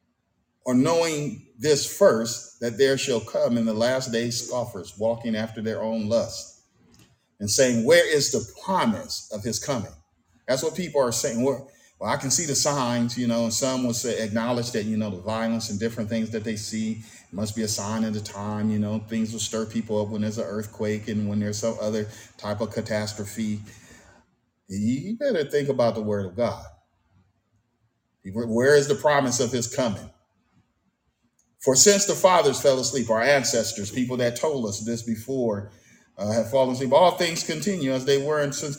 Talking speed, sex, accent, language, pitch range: 190 wpm, male, American, English, 105-130 Hz